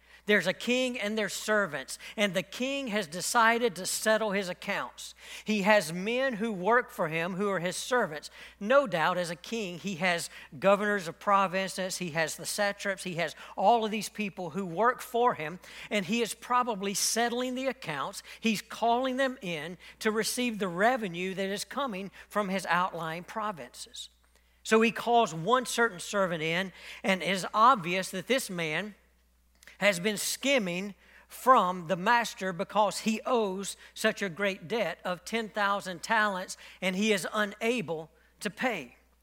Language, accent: English, American